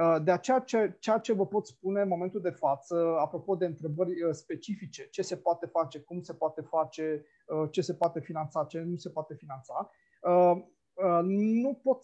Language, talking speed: Romanian, 175 wpm